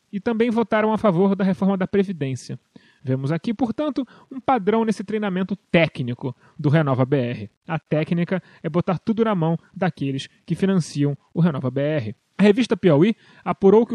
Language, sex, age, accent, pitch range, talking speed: Portuguese, male, 30-49, Brazilian, 165-220 Hz, 155 wpm